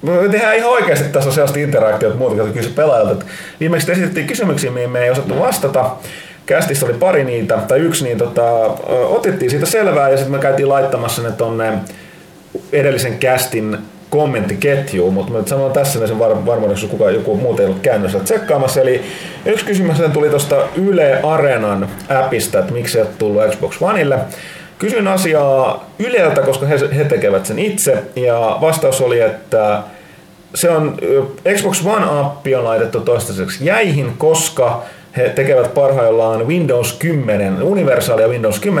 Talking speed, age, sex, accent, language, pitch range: 155 wpm, 30-49, male, native, Finnish, 115-175 Hz